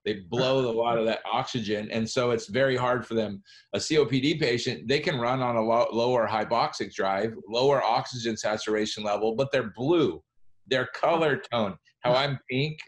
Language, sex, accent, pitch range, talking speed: English, male, American, 110-130 Hz, 175 wpm